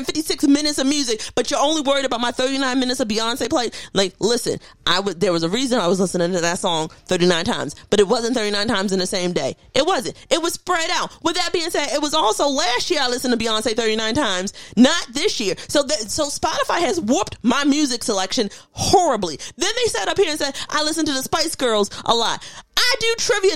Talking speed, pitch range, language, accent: 235 wpm, 240-330 Hz, English, American